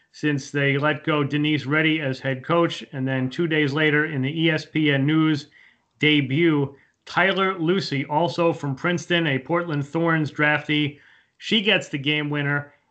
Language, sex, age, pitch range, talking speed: English, male, 30-49, 140-165 Hz, 155 wpm